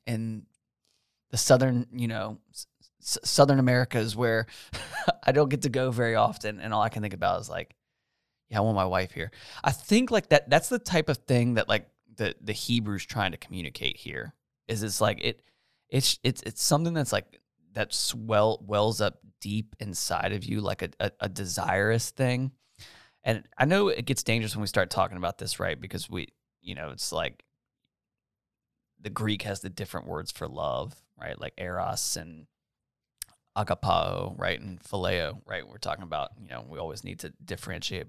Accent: American